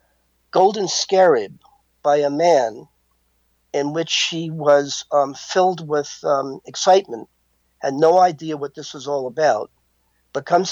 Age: 50-69